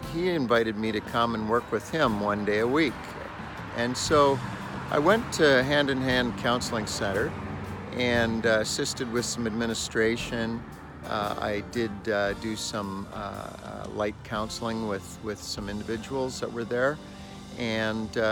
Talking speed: 150 wpm